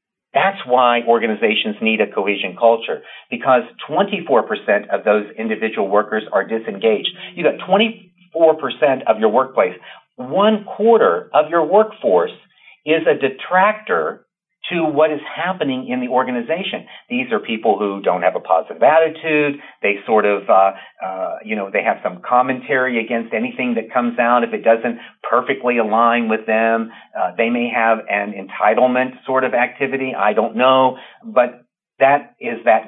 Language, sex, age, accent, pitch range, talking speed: English, male, 50-69, American, 115-165 Hz, 155 wpm